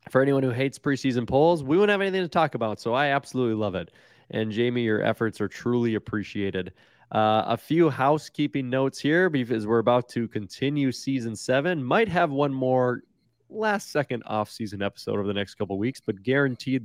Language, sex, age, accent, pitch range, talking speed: English, male, 20-39, American, 110-135 Hz, 190 wpm